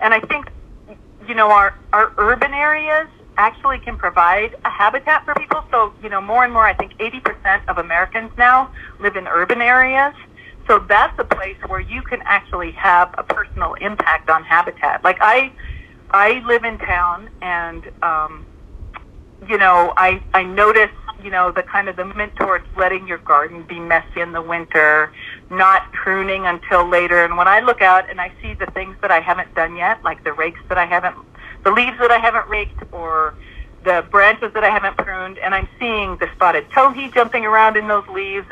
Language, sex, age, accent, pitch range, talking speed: English, female, 50-69, American, 175-225 Hz, 195 wpm